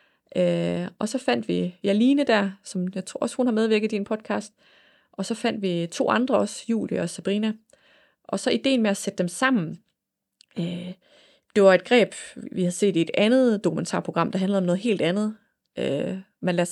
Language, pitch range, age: Danish, 180-225 Hz, 30-49